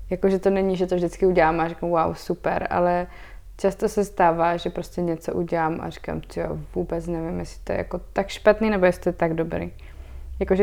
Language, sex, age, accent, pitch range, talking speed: Czech, female, 20-39, native, 165-190 Hz, 210 wpm